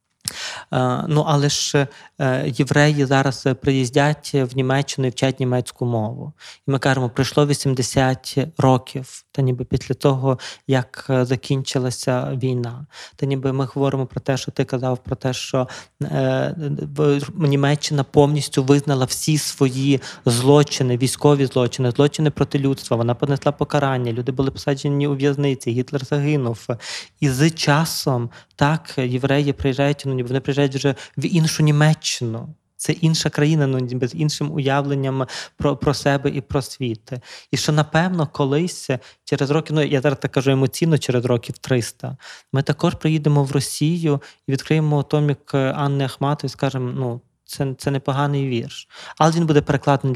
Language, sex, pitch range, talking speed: Ukrainian, male, 130-145 Hz, 140 wpm